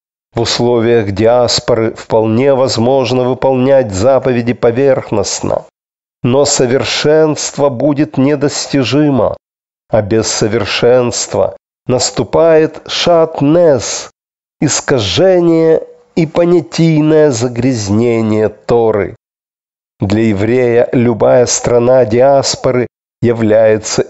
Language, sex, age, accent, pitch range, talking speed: Russian, male, 40-59, native, 110-140 Hz, 70 wpm